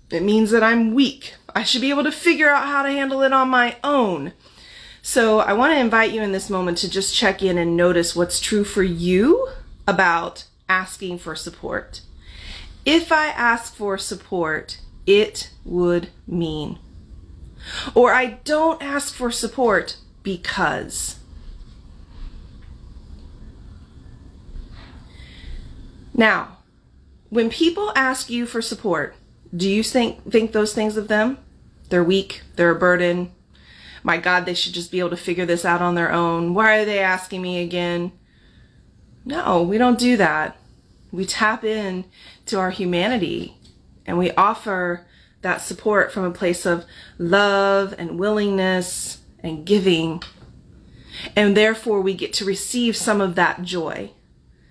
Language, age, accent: English, 30-49, American